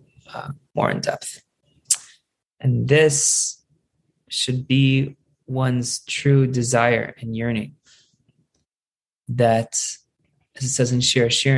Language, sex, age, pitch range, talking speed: English, male, 20-39, 125-145 Hz, 100 wpm